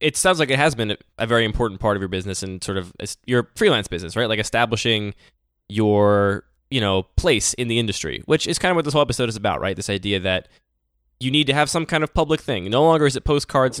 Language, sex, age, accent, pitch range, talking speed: English, male, 10-29, American, 100-135 Hz, 250 wpm